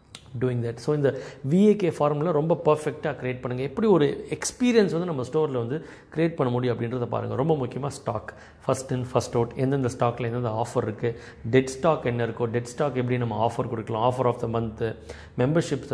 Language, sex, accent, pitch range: Tamil, male, native, 120-145 Hz